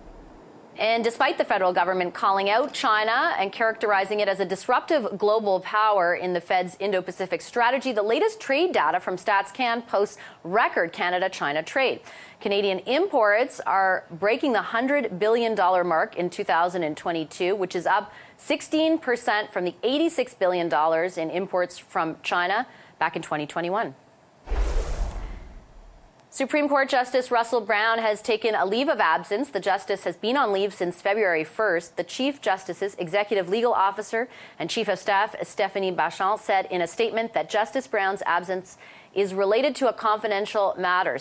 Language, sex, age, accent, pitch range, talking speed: English, female, 30-49, American, 180-230 Hz, 150 wpm